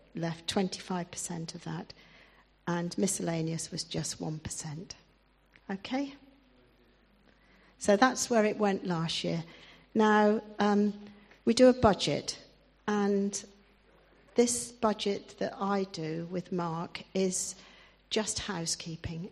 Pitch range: 170-205 Hz